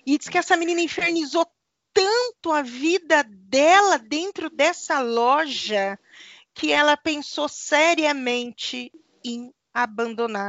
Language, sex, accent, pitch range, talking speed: Portuguese, female, Brazilian, 255-365 Hz, 110 wpm